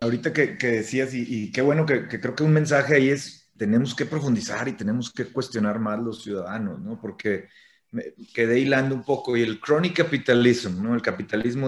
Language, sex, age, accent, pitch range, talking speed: Spanish, male, 30-49, Mexican, 115-150 Hz, 205 wpm